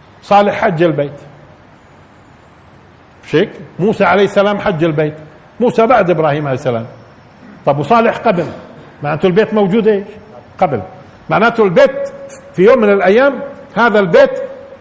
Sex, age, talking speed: male, 50-69, 120 wpm